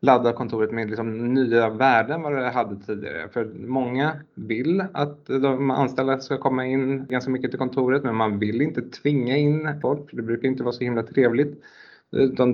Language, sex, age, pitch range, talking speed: Swedish, male, 20-39, 110-130 Hz, 180 wpm